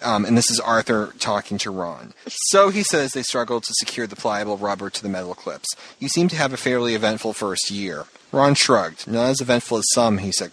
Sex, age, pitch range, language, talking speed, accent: male, 30-49, 100-120 Hz, English, 230 wpm, American